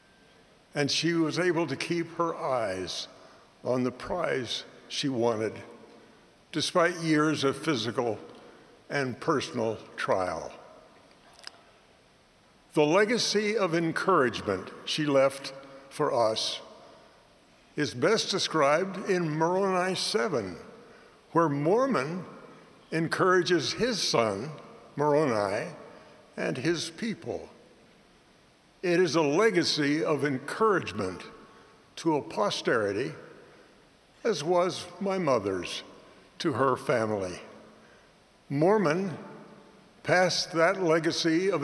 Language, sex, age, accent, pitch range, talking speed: English, male, 60-79, American, 140-180 Hz, 90 wpm